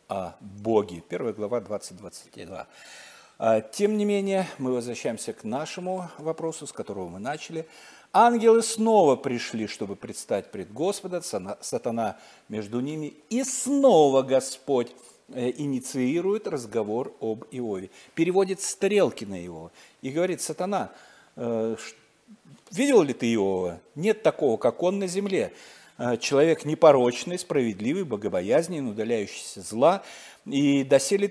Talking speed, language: 115 wpm, Russian